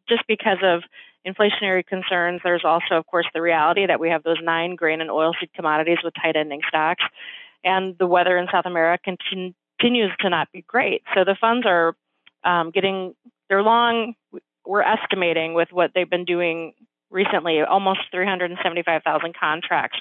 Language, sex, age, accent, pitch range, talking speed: English, female, 30-49, American, 170-205 Hz, 165 wpm